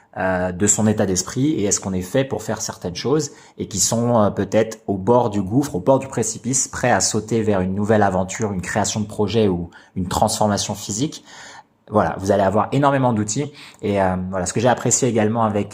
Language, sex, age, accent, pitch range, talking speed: French, male, 20-39, French, 95-120 Hz, 215 wpm